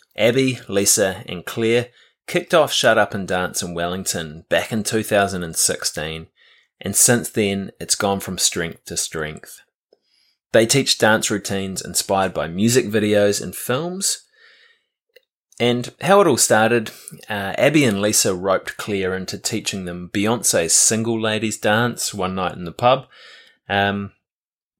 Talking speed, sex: 140 wpm, male